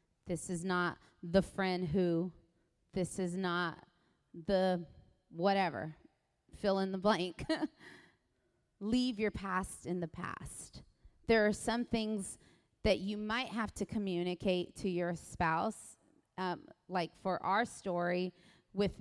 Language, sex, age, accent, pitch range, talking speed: English, female, 30-49, American, 180-220 Hz, 125 wpm